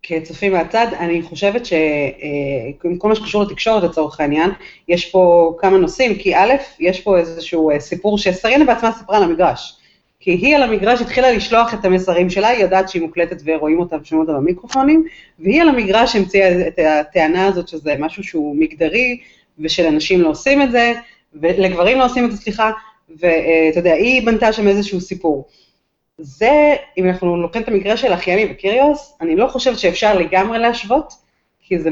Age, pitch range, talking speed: 30-49, 165-235 Hz, 170 wpm